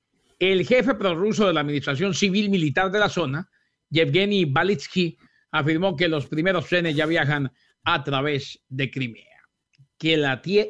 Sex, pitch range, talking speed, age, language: male, 155-215 Hz, 150 wpm, 50-69, English